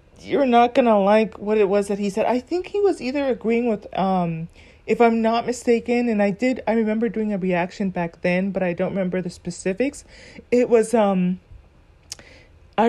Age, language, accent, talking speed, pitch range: 30-49, English, American, 195 wpm, 180-240 Hz